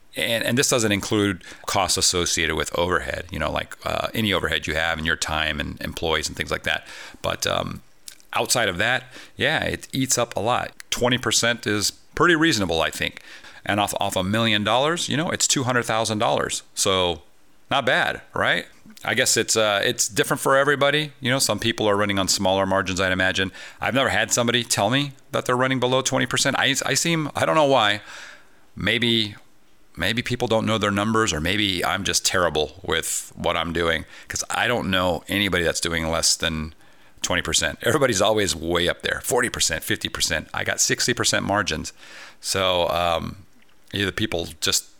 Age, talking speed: 40-59, 180 wpm